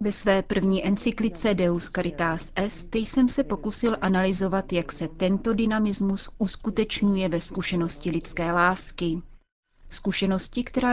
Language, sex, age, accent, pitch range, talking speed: Czech, female, 30-49, native, 175-205 Hz, 125 wpm